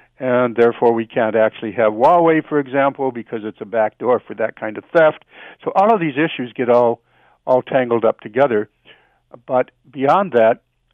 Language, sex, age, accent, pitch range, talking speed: English, male, 60-79, American, 115-140 Hz, 180 wpm